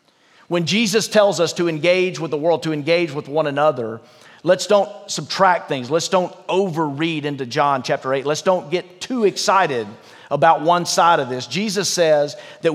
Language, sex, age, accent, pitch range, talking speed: English, male, 40-59, American, 145-185 Hz, 180 wpm